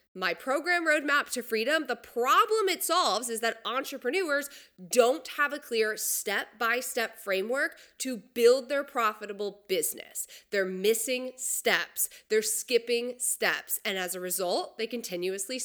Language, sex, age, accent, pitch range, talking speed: English, female, 20-39, American, 220-320 Hz, 135 wpm